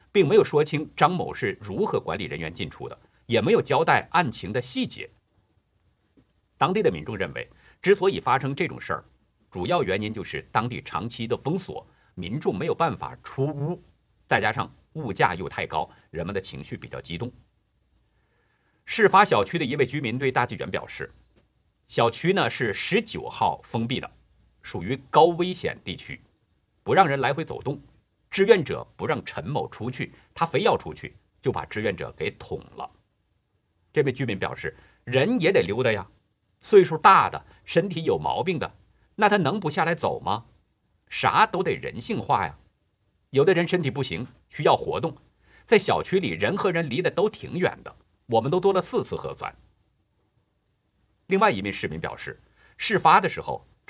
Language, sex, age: Chinese, male, 50-69